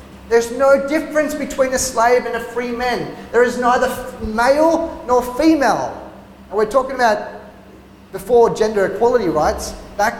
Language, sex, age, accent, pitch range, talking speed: English, male, 30-49, Australian, 175-245 Hz, 145 wpm